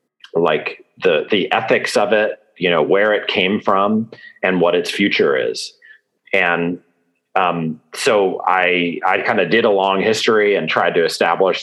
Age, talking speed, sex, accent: 40-59, 165 wpm, male, American